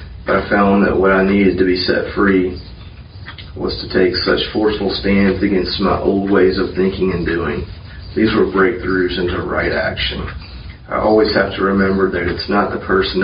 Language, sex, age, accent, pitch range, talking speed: English, male, 40-59, American, 90-100 Hz, 185 wpm